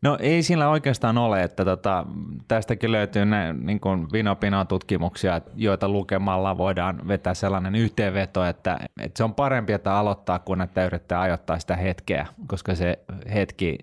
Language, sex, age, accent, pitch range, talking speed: Finnish, male, 20-39, native, 90-105 Hz, 150 wpm